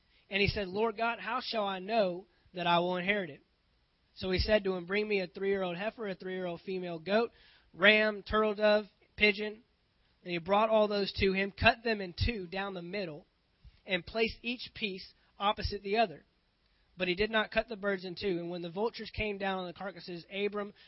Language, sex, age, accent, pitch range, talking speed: English, male, 20-39, American, 170-205 Hz, 205 wpm